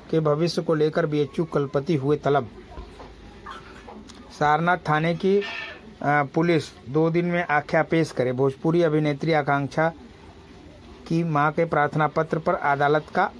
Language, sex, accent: Hindi, male, native